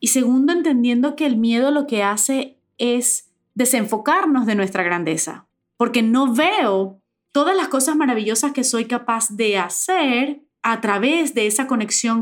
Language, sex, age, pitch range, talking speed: English, female, 30-49, 205-275 Hz, 150 wpm